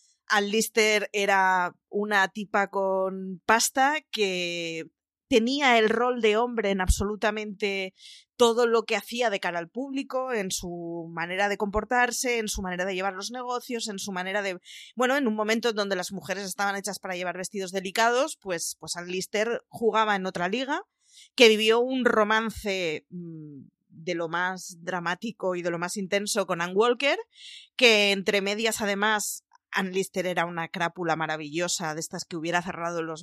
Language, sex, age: Spanish, female, 20-39